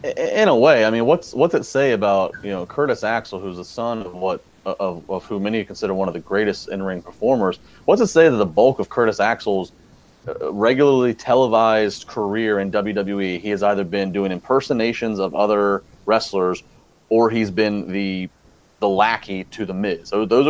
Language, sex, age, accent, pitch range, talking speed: English, male, 30-49, American, 100-120 Hz, 185 wpm